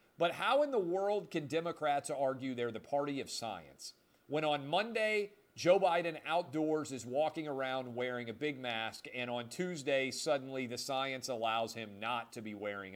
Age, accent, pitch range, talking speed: 40-59, American, 125-160 Hz, 175 wpm